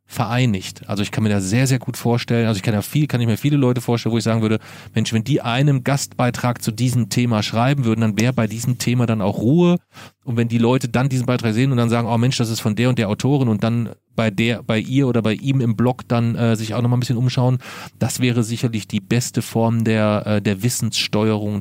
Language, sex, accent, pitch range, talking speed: German, male, German, 110-125 Hz, 255 wpm